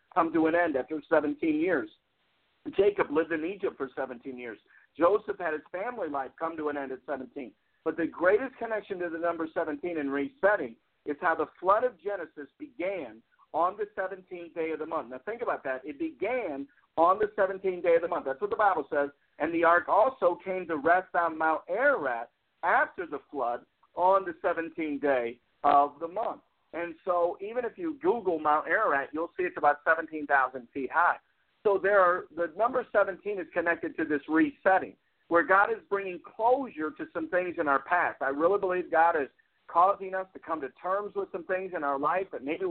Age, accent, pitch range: 50-69, American, 160-205 Hz